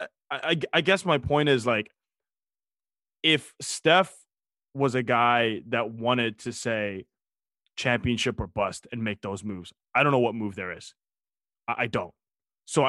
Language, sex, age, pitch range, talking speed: English, male, 20-39, 120-155 Hz, 155 wpm